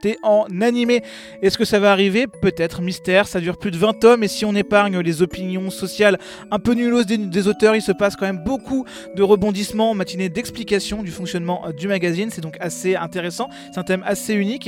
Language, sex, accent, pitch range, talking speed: French, male, French, 180-225 Hz, 210 wpm